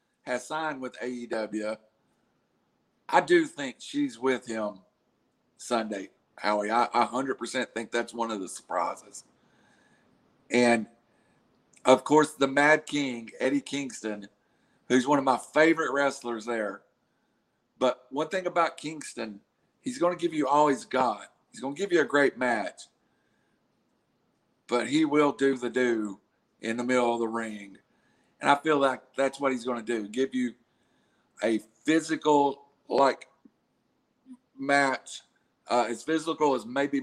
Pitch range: 115-140 Hz